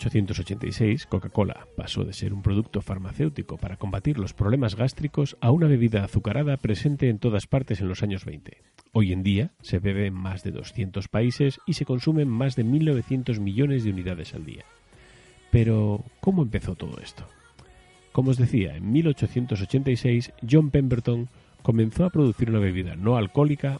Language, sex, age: Spanish, male, 40-59